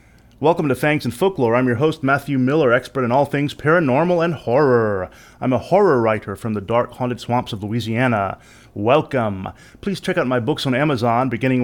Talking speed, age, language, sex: 190 wpm, 30-49, English, male